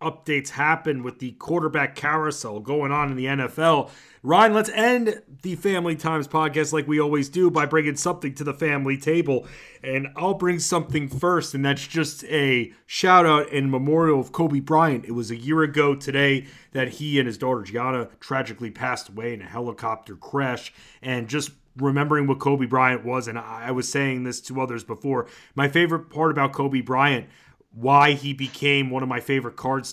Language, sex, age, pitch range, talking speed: English, male, 30-49, 125-155 Hz, 185 wpm